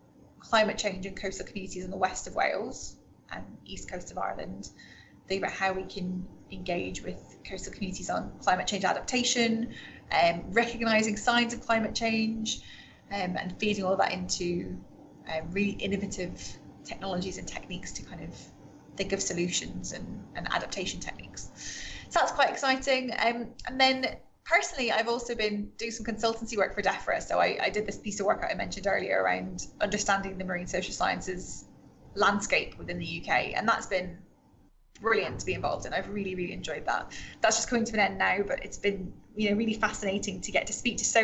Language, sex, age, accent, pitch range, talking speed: English, female, 20-39, British, 185-225 Hz, 185 wpm